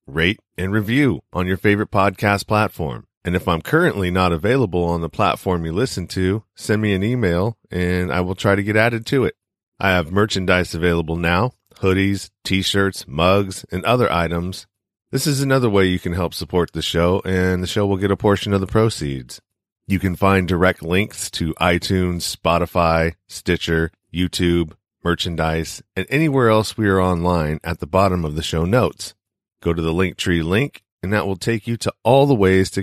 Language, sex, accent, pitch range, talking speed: English, male, American, 90-105 Hz, 190 wpm